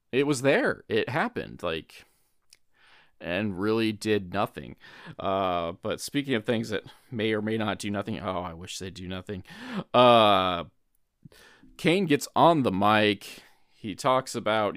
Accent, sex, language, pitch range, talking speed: American, male, English, 100-130 Hz, 150 wpm